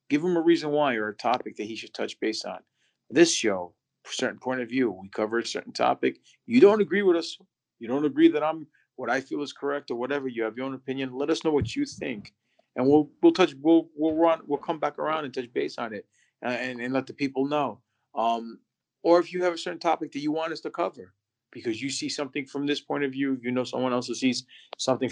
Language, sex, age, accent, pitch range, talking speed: English, male, 40-59, American, 110-145 Hz, 255 wpm